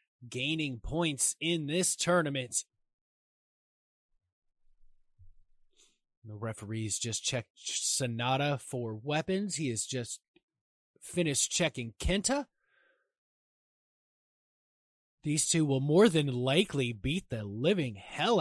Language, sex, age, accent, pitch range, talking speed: English, male, 20-39, American, 130-195 Hz, 90 wpm